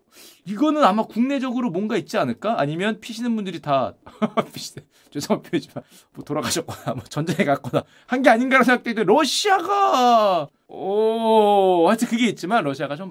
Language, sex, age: Korean, male, 30-49